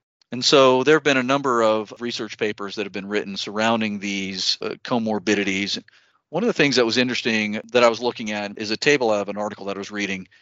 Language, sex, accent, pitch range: English, male, American, 100-125 Hz